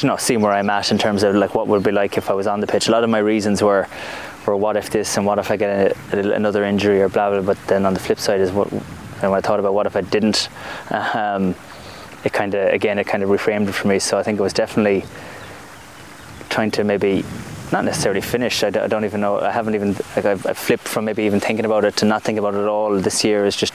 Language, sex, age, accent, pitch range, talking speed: English, male, 20-39, Irish, 100-110 Hz, 285 wpm